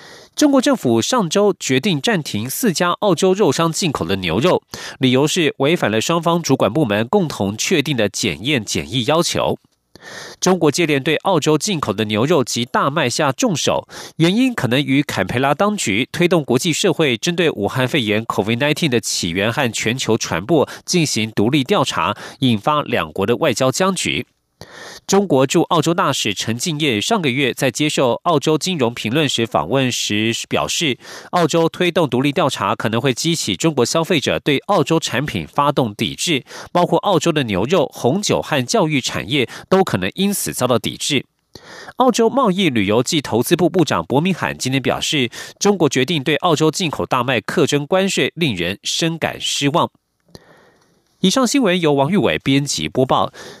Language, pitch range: German, 125-175 Hz